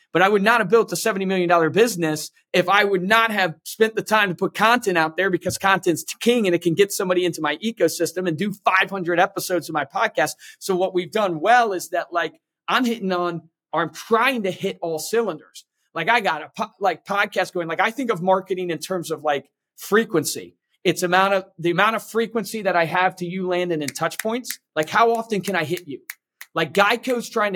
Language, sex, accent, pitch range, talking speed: English, male, American, 170-210 Hz, 225 wpm